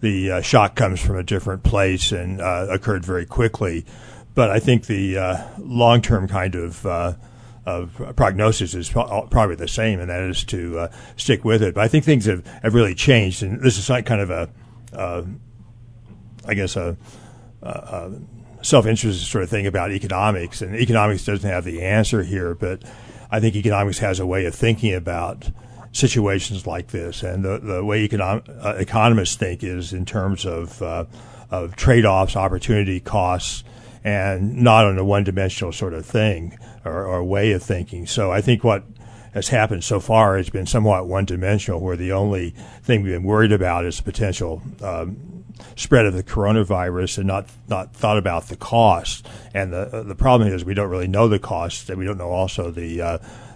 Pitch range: 95-115 Hz